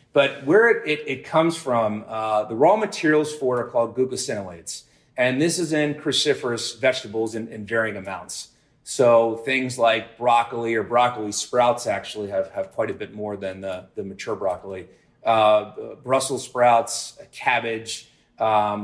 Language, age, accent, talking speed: English, 30-49, American, 160 wpm